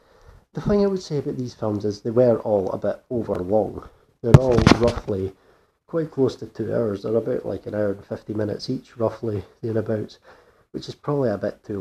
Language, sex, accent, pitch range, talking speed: English, male, British, 105-125 Hz, 210 wpm